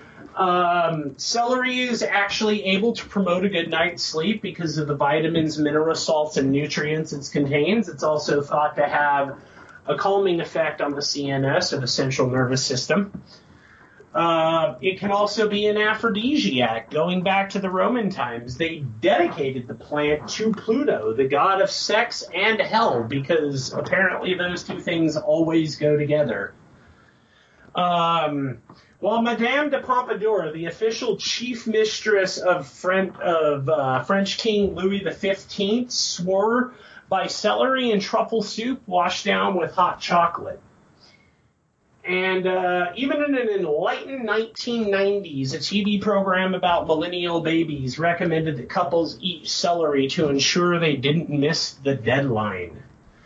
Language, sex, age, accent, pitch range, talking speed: English, male, 30-49, American, 150-210 Hz, 135 wpm